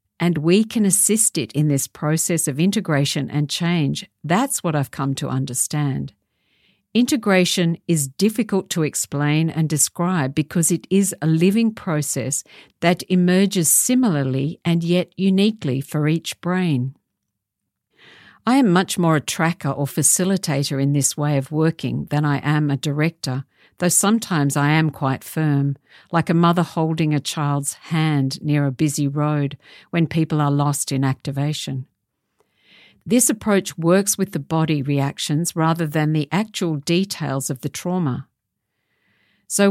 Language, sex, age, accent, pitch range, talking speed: English, female, 50-69, Australian, 145-180 Hz, 145 wpm